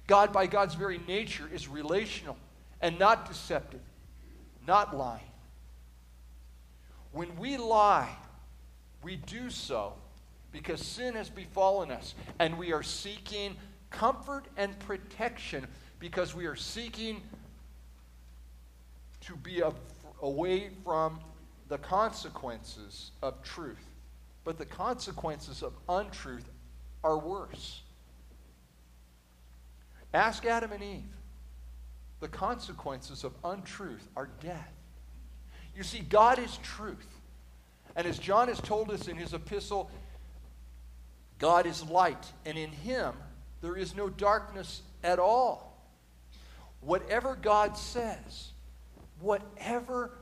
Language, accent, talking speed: English, American, 105 wpm